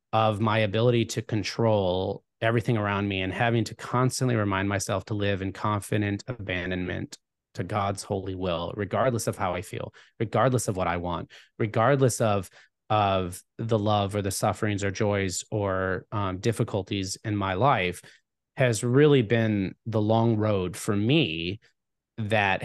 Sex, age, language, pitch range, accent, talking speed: male, 30-49, English, 105-140 Hz, American, 155 wpm